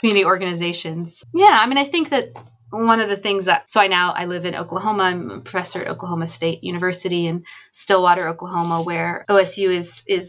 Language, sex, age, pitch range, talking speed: English, female, 20-39, 170-210 Hz, 200 wpm